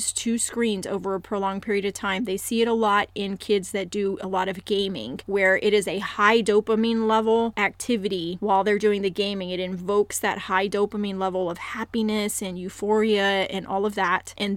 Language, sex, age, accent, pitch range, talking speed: English, female, 30-49, American, 190-215 Hz, 200 wpm